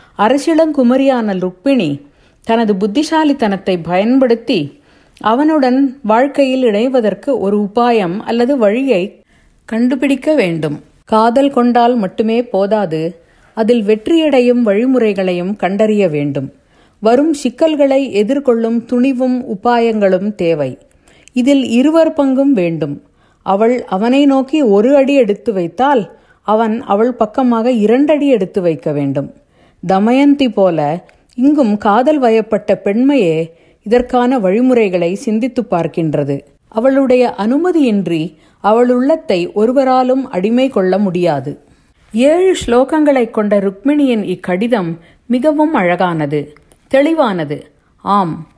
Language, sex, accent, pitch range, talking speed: Tamil, female, native, 190-260 Hz, 90 wpm